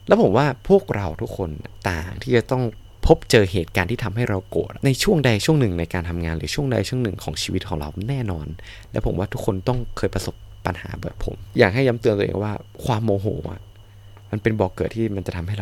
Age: 20-39